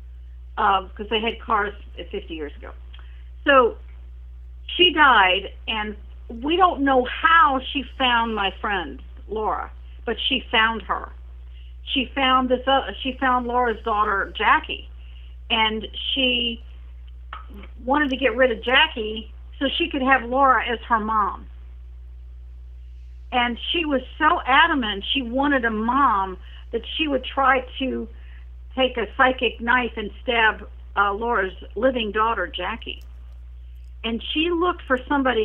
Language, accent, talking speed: English, American, 135 wpm